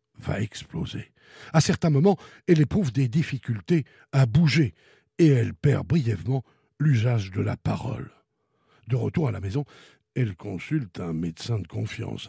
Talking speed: 145 wpm